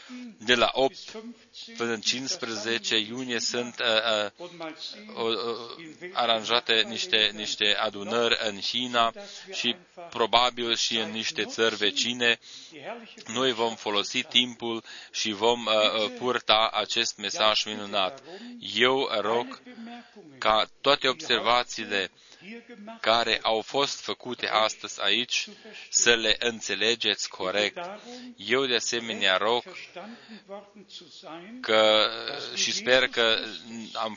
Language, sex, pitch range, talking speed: Romanian, male, 110-140 Hz, 95 wpm